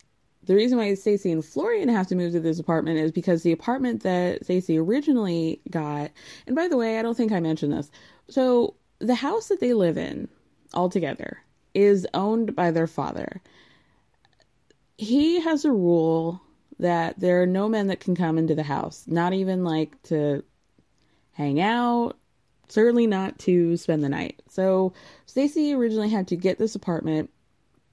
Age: 20-39